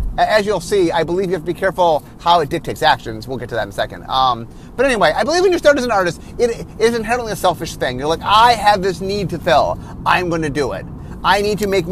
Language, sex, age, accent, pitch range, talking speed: English, male, 30-49, American, 165-215 Hz, 275 wpm